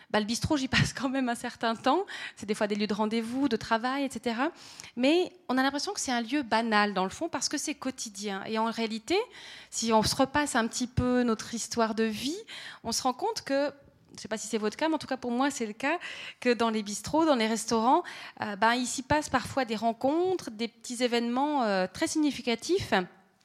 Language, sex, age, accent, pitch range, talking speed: French, female, 30-49, French, 220-275 Hz, 235 wpm